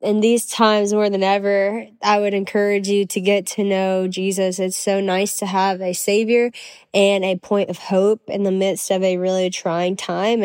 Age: 10-29